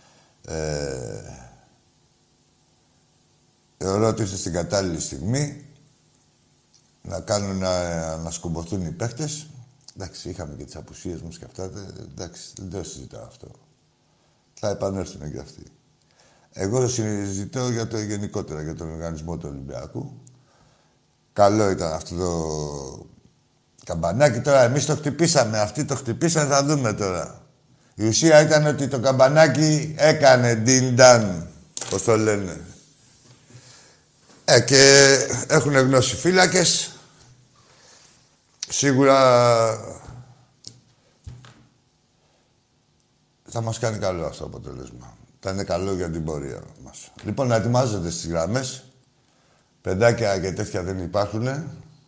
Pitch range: 95-135 Hz